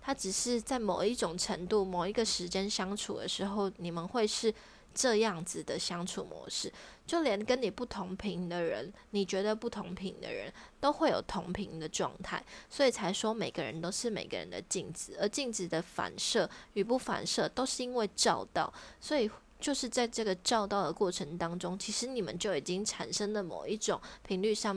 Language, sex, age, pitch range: Chinese, female, 20-39, 185-230 Hz